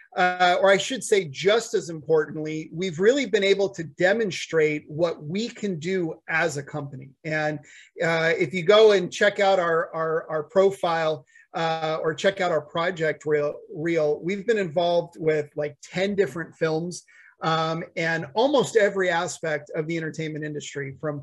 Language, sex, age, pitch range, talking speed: English, male, 30-49, 160-190 Hz, 160 wpm